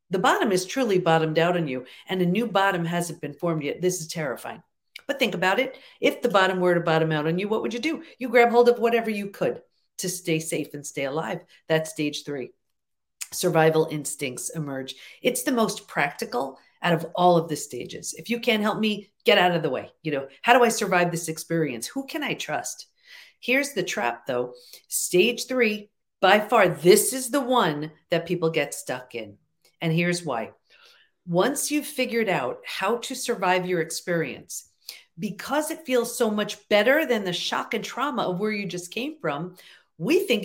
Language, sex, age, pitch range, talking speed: English, female, 50-69, 170-240 Hz, 200 wpm